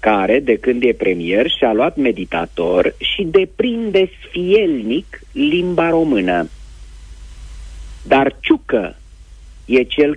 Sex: male